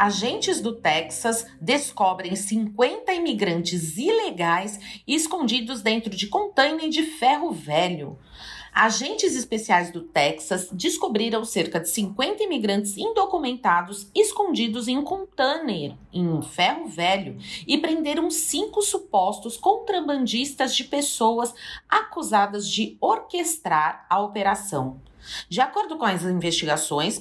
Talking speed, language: 110 wpm, English